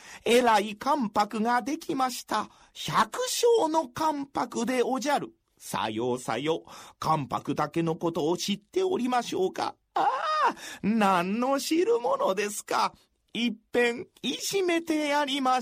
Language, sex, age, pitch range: Japanese, male, 40-59, 195-280 Hz